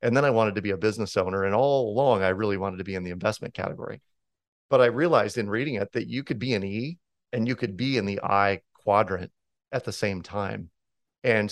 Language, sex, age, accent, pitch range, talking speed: English, male, 40-59, American, 95-115 Hz, 240 wpm